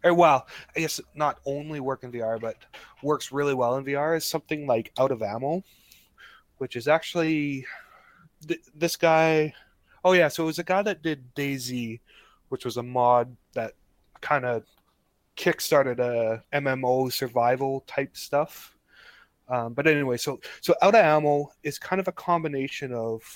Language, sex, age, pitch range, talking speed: English, male, 20-39, 120-150 Hz, 165 wpm